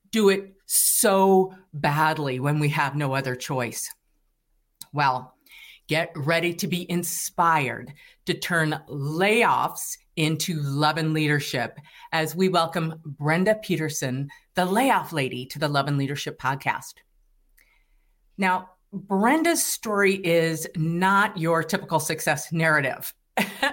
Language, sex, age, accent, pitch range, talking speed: English, female, 50-69, American, 155-205 Hz, 115 wpm